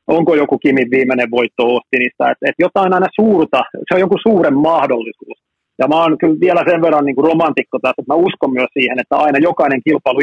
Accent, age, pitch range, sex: native, 30-49, 130-165 Hz, male